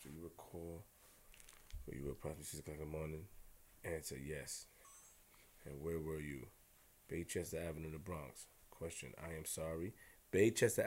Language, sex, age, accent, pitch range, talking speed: English, male, 20-39, American, 80-105 Hz, 155 wpm